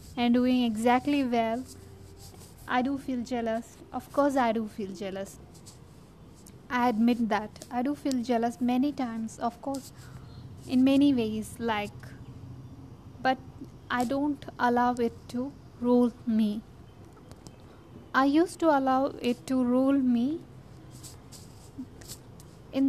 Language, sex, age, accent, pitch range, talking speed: English, female, 20-39, Indian, 225-265 Hz, 120 wpm